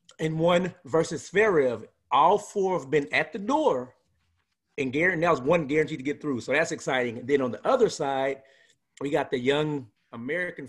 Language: English